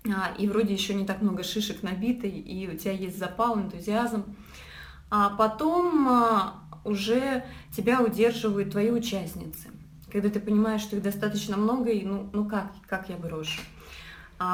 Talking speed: 150 wpm